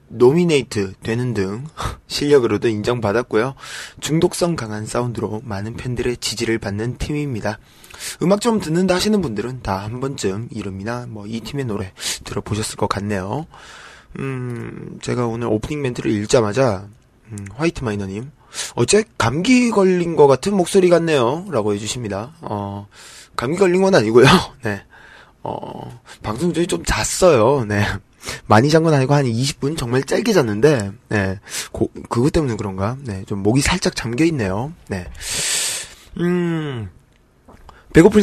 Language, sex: Korean, male